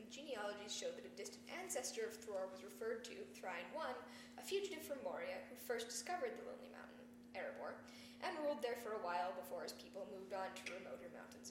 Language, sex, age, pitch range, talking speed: English, female, 10-29, 230-275 Hz, 200 wpm